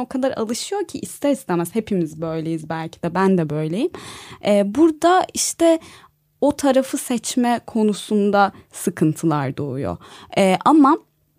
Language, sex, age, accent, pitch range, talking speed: Turkish, female, 20-39, native, 175-225 Hz, 125 wpm